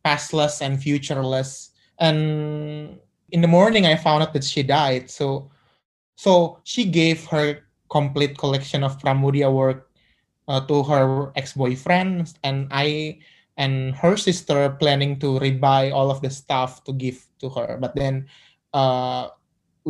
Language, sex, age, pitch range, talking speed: English, male, 20-39, 135-160 Hz, 140 wpm